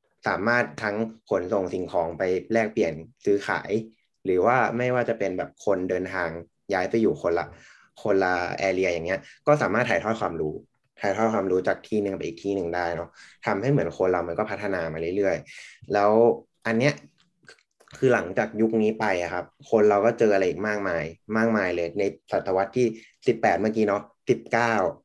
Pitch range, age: 95-115 Hz, 20-39